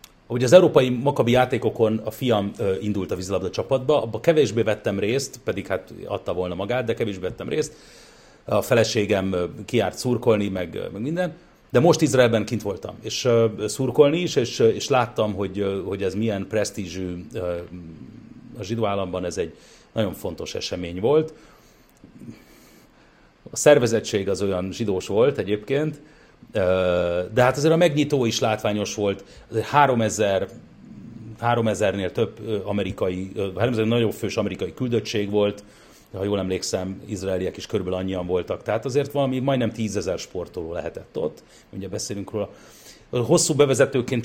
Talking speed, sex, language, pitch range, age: 140 wpm, male, Hungarian, 100-125 Hz, 40-59